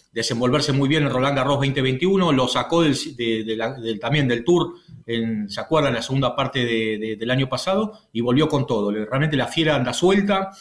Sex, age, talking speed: male, 40-59, 210 wpm